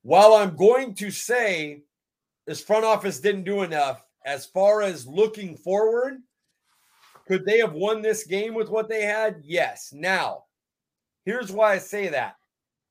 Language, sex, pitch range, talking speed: English, male, 165-215 Hz, 155 wpm